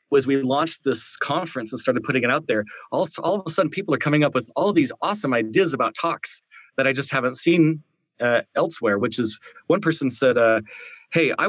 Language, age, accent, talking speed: English, 30-49, American, 220 wpm